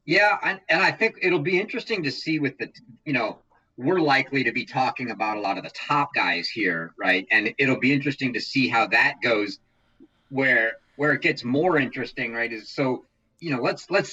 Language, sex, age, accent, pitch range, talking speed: English, male, 40-59, American, 110-140 Hz, 210 wpm